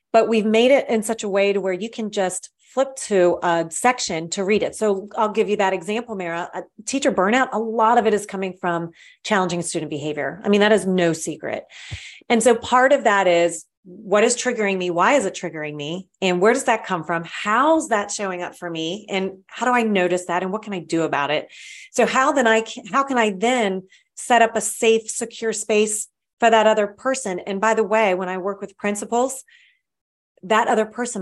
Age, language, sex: 30-49, English, female